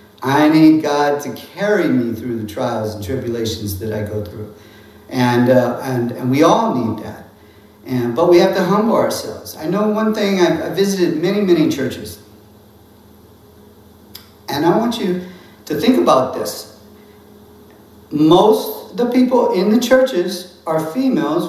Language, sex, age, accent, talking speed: English, male, 50-69, American, 160 wpm